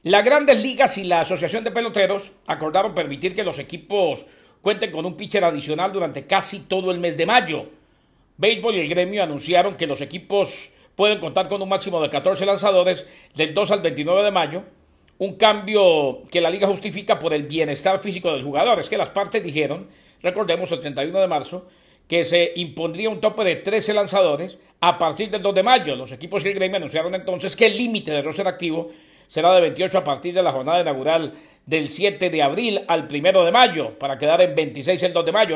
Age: 50-69